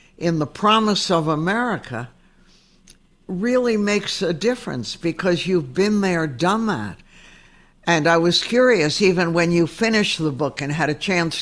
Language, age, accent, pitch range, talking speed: English, 60-79, American, 145-185 Hz, 150 wpm